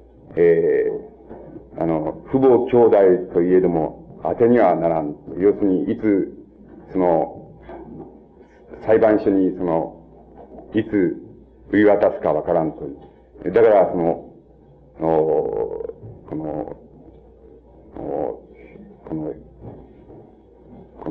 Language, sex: Japanese, male